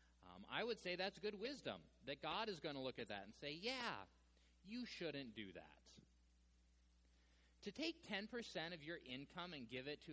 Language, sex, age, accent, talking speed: English, male, 30-49, American, 185 wpm